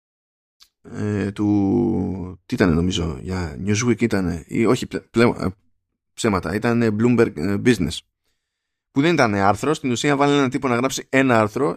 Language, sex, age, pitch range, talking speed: Greek, male, 20-39, 100-140 Hz, 160 wpm